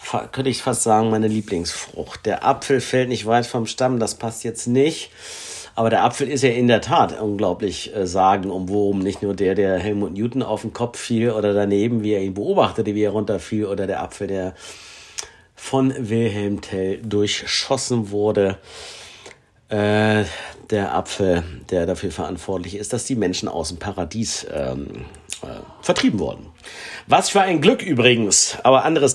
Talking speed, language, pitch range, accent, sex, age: 170 wpm, German, 100-130 Hz, German, male, 50-69